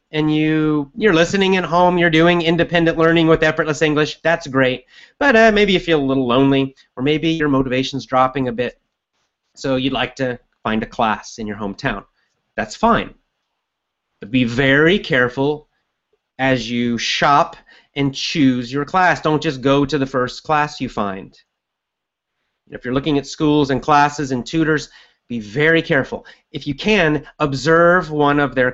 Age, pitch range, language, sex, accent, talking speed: 30-49, 130-165 Hz, English, male, American, 170 wpm